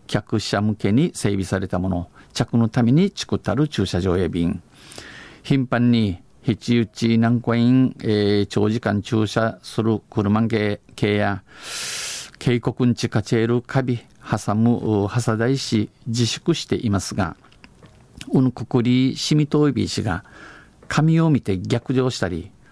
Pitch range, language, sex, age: 105-125 Hz, Japanese, male, 50-69